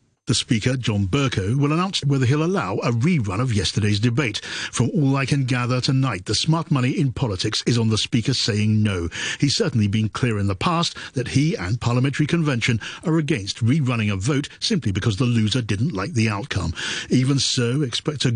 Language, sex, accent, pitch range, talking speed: English, male, British, 100-130 Hz, 195 wpm